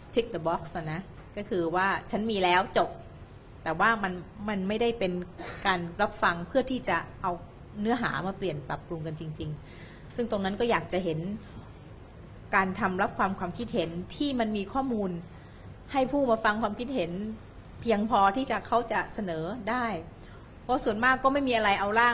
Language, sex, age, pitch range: Thai, female, 30-49, 180-235 Hz